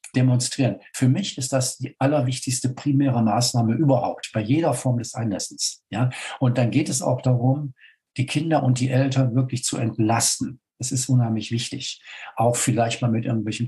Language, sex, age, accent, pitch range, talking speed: German, male, 50-69, German, 110-130 Hz, 170 wpm